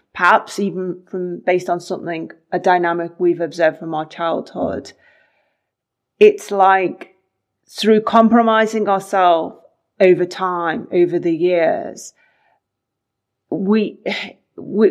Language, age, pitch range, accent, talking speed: English, 30-49, 175-205 Hz, British, 95 wpm